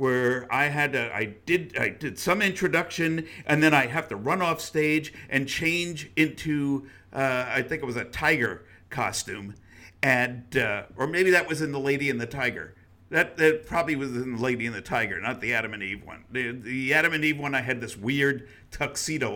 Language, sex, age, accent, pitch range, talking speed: English, male, 50-69, American, 110-155 Hz, 210 wpm